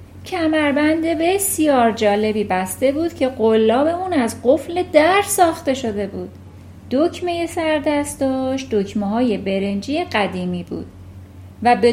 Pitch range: 185-280 Hz